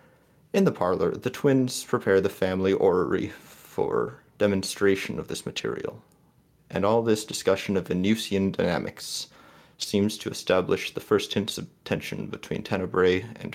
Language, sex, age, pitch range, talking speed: English, male, 30-49, 95-115 Hz, 140 wpm